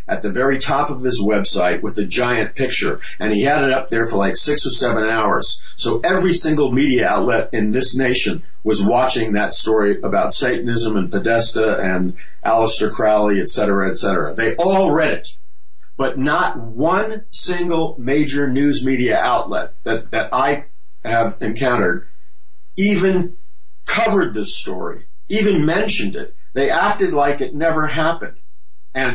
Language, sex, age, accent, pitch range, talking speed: English, male, 50-69, American, 115-165 Hz, 160 wpm